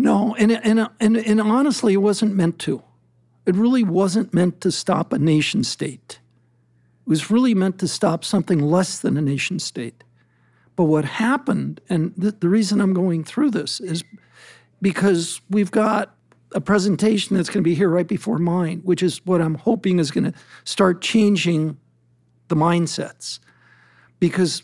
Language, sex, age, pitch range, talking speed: English, male, 60-79, 160-200 Hz, 170 wpm